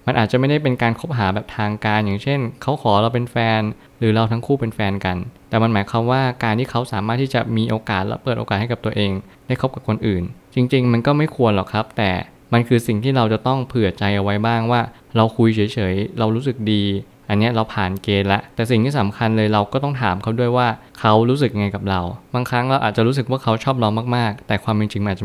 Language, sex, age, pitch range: Thai, male, 20-39, 105-125 Hz